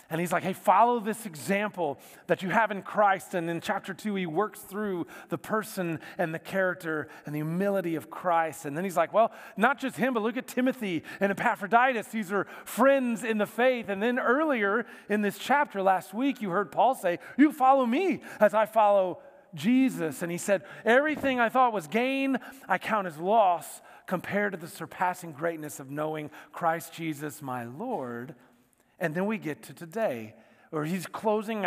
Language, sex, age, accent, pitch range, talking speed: English, male, 40-59, American, 170-225 Hz, 190 wpm